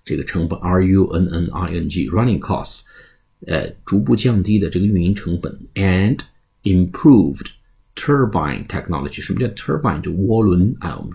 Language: Chinese